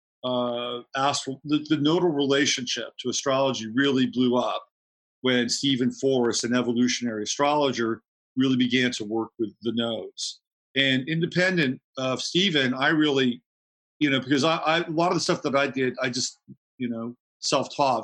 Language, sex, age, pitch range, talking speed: English, male, 40-59, 125-150 Hz, 160 wpm